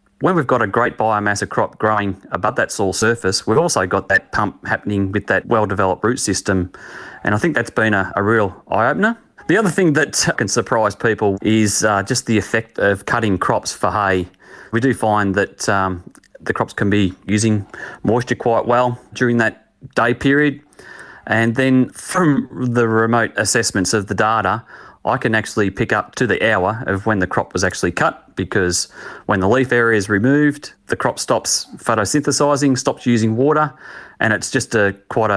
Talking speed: 185 wpm